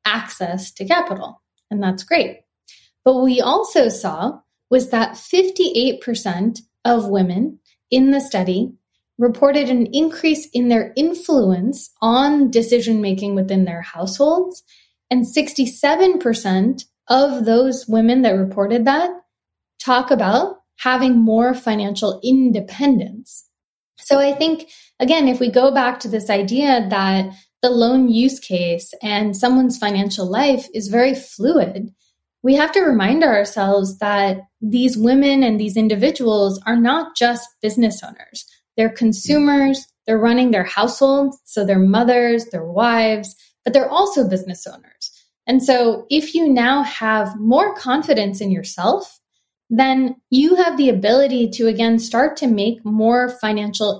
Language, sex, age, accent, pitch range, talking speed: English, female, 20-39, American, 215-275 Hz, 135 wpm